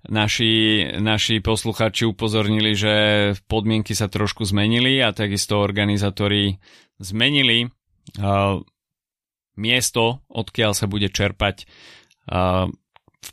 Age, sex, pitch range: 30-49, male, 95-115 Hz